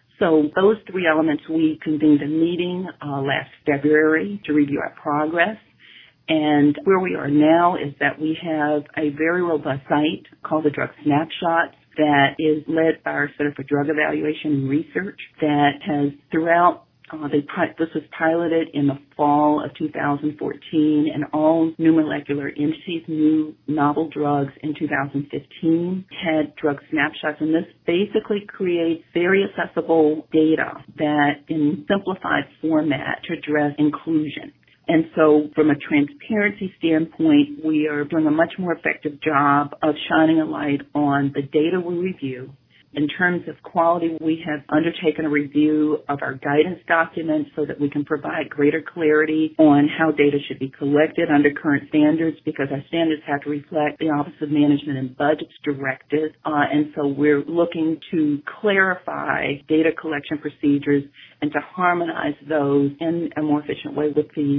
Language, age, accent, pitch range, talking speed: English, 50-69, American, 145-160 Hz, 155 wpm